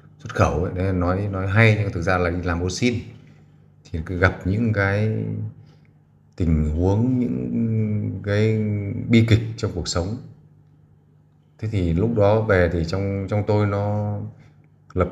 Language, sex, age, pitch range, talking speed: Vietnamese, male, 20-39, 85-110 Hz, 155 wpm